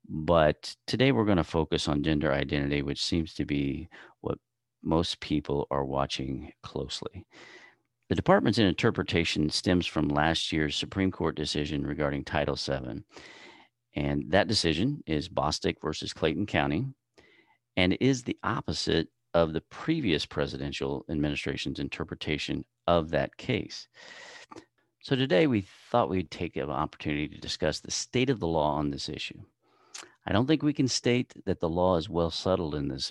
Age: 40-59